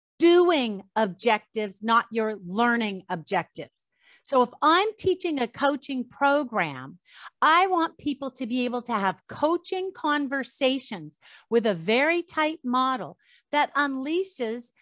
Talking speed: 120 wpm